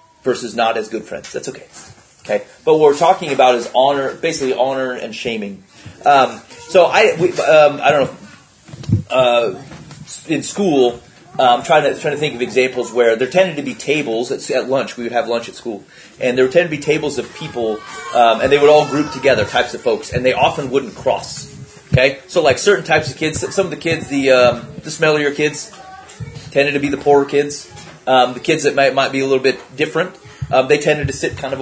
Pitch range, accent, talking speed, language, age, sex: 130-165 Hz, American, 225 wpm, English, 30-49, male